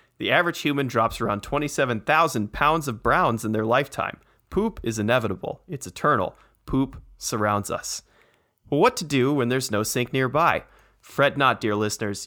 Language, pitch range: English, 115-145 Hz